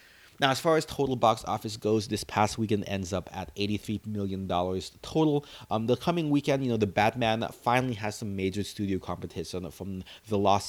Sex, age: male, 30-49